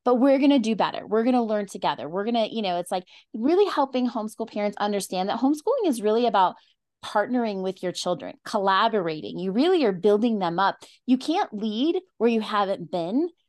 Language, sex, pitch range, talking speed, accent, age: English, female, 190-260 Hz, 205 wpm, American, 20-39